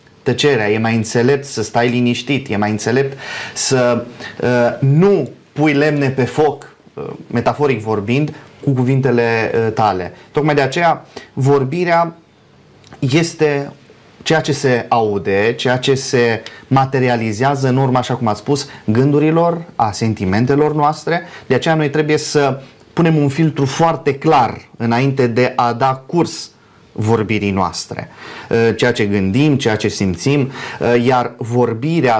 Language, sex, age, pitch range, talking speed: Romanian, male, 30-49, 115-150 Hz, 135 wpm